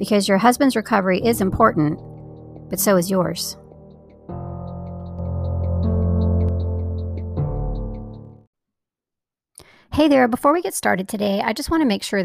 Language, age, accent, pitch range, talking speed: English, 40-59, American, 175-215 Hz, 115 wpm